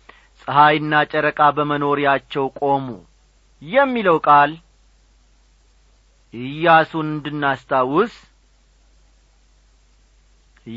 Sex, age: male, 40-59